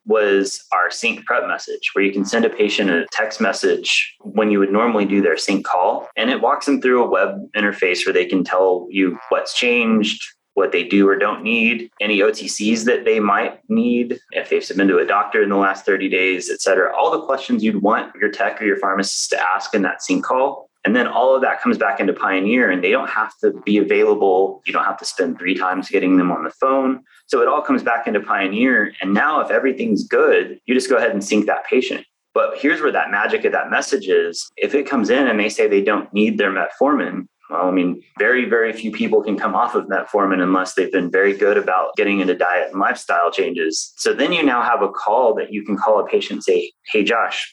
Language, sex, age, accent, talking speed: English, male, 30-49, American, 235 wpm